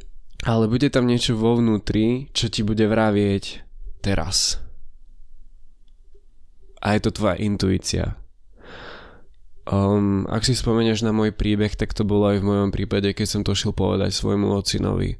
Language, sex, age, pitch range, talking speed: Slovak, male, 20-39, 95-105 Hz, 145 wpm